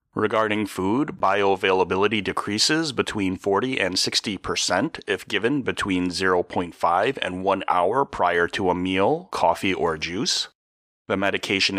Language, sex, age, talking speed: English, male, 30-49, 125 wpm